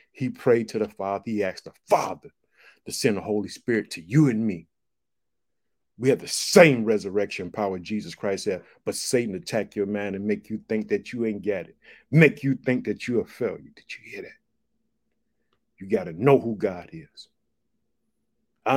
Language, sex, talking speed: English, male, 190 wpm